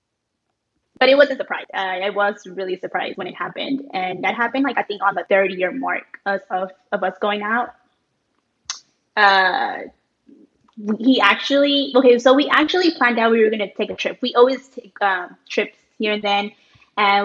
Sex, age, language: female, 20-39, English